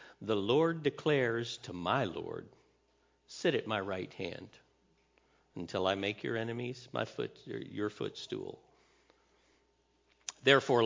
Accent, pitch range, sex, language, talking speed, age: American, 105-140 Hz, male, English, 115 wpm, 50-69